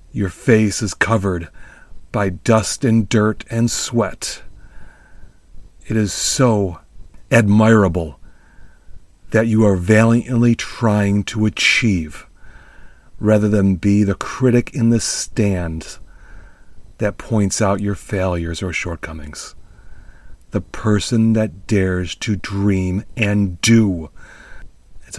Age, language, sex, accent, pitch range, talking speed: 40-59, English, male, American, 95-115 Hz, 105 wpm